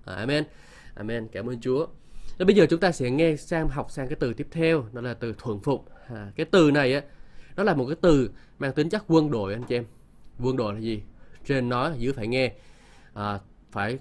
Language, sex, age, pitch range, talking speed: Vietnamese, male, 20-39, 115-160 Hz, 225 wpm